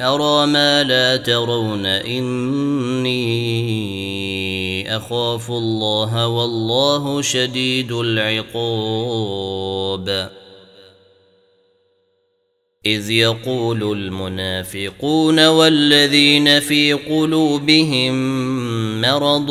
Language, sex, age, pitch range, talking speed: Arabic, male, 30-49, 105-130 Hz, 50 wpm